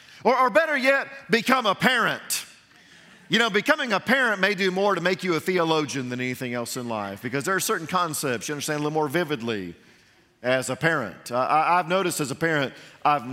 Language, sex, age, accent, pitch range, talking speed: English, male, 40-59, American, 125-180 Hz, 205 wpm